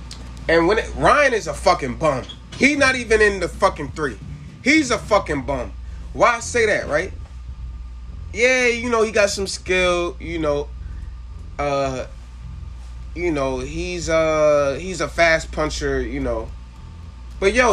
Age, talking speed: 30-49, 155 wpm